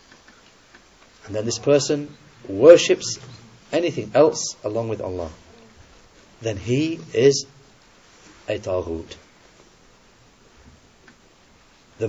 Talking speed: 80 wpm